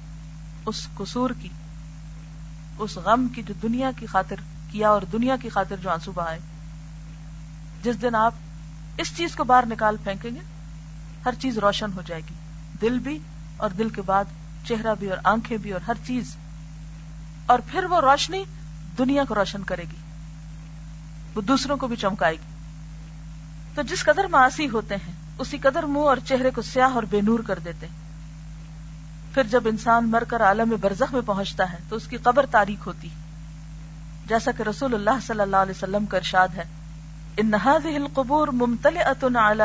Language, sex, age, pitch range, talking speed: Urdu, female, 40-59, 155-235 Hz, 170 wpm